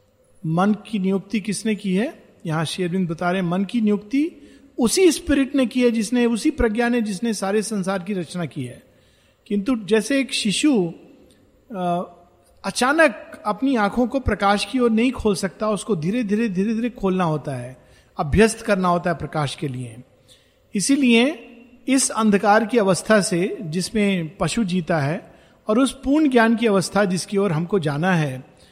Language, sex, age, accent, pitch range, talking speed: Hindi, male, 50-69, native, 175-230 Hz, 170 wpm